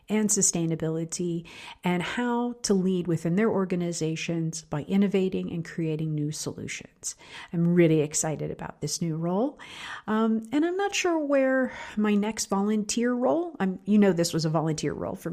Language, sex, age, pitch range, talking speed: English, female, 50-69, 165-215 Hz, 160 wpm